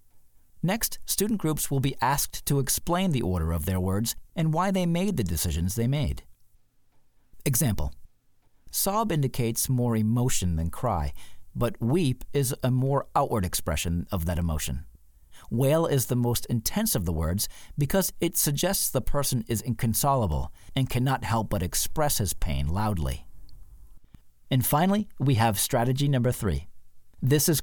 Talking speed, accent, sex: 150 wpm, American, male